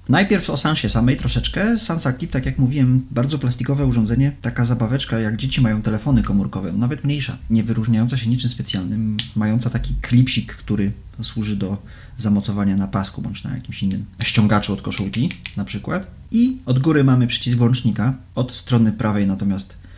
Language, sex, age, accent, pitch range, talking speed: Polish, male, 30-49, native, 100-130 Hz, 165 wpm